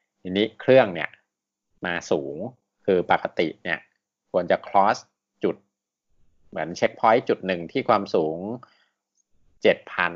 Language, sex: Thai, male